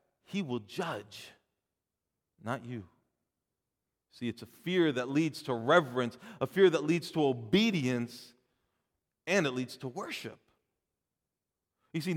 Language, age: English, 40-59